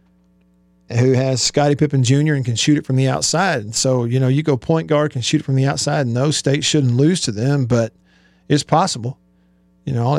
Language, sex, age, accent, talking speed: English, male, 40-59, American, 225 wpm